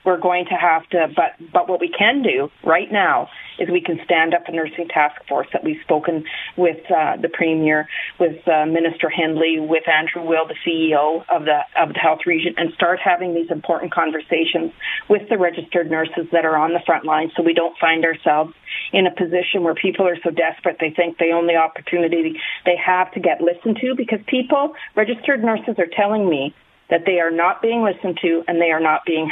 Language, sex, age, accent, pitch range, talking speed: English, female, 40-59, American, 165-200 Hz, 210 wpm